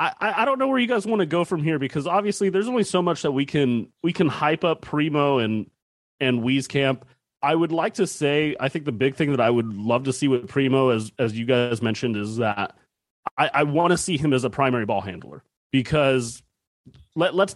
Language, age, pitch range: English, 30-49, 125-165 Hz